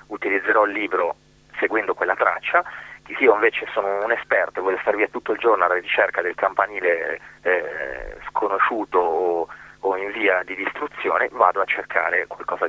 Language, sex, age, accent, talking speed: Italian, male, 30-49, native, 160 wpm